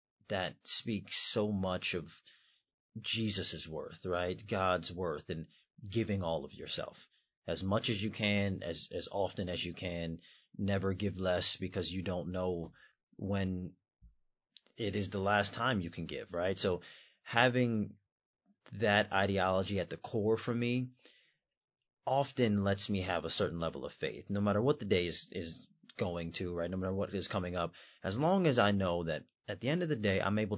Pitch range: 90-110 Hz